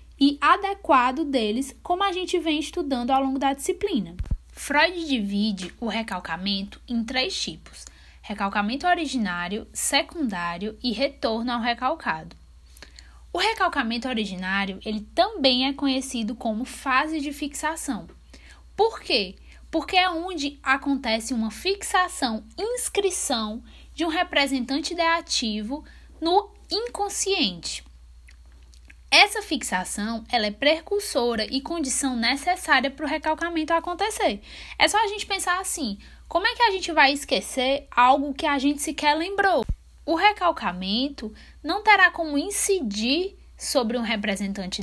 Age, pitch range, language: 10-29, 220-340 Hz, Portuguese